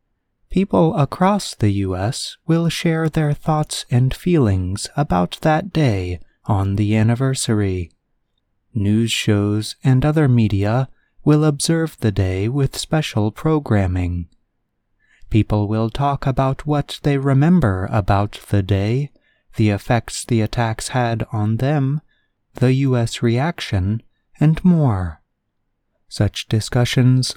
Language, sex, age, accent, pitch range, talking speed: English, male, 30-49, American, 100-150 Hz, 115 wpm